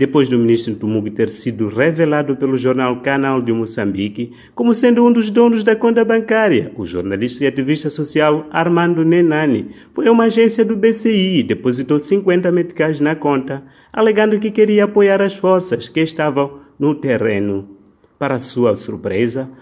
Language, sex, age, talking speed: Portuguese, male, 30-49, 160 wpm